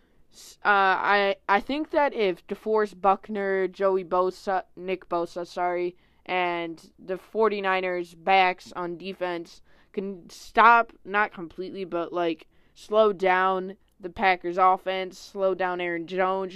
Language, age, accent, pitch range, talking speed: English, 20-39, American, 175-200 Hz, 125 wpm